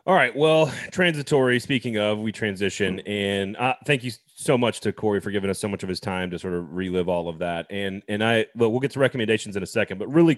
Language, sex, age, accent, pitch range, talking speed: English, male, 30-49, American, 100-125 Hz, 255 wpm